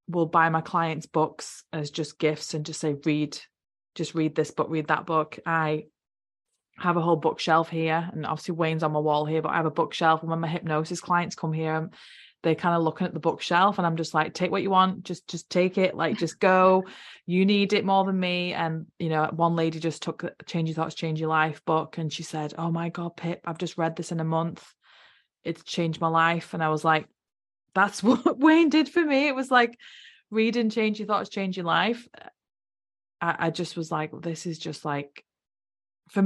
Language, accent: English, British